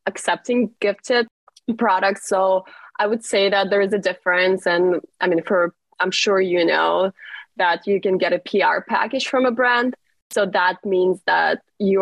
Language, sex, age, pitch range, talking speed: English, female, 20-39, 185-235 Hz, 175 wpm